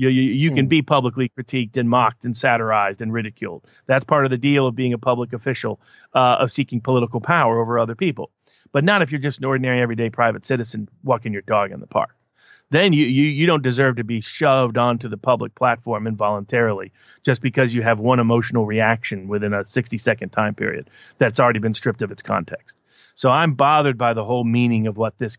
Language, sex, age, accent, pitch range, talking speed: English, male, 40-59, American, 115-130 Hz, 215 wpm